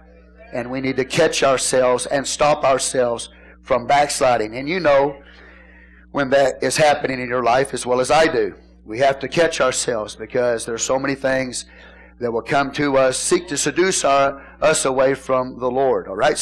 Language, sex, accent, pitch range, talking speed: English, male, American, 105-155 Hz, 190 wpm